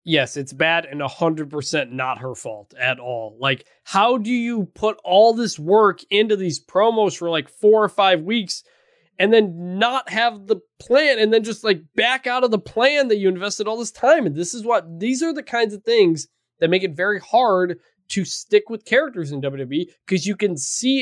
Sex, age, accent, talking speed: male, 20-39, American, 215 wpm